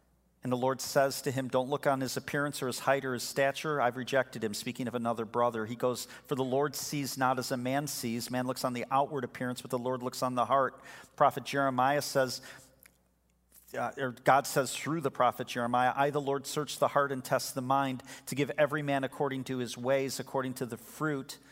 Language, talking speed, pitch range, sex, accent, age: English, 225 wpm, 120-140 Hz, male, American, 40-59